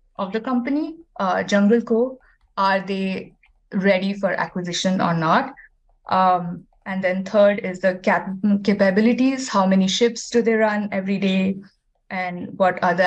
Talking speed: 150 wpm